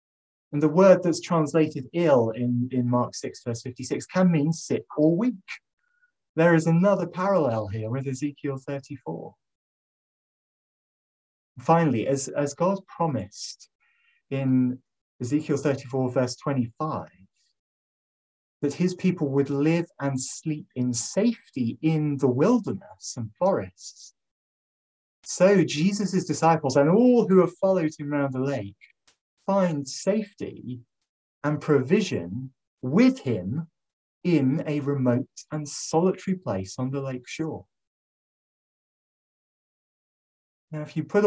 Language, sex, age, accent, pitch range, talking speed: English, male, 30-49, British, 130-180 Hz, 120 wpm